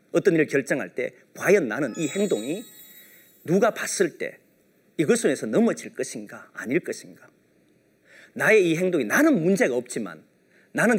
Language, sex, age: Korean, male, 40-59